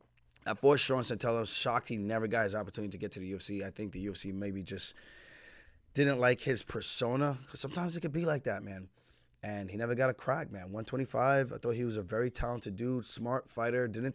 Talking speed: 225 wpm